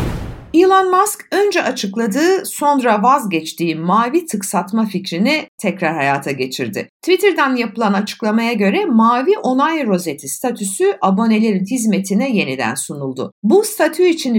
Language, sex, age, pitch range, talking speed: Turkish, female, 60-79, 175-270 Hz, 115 wpm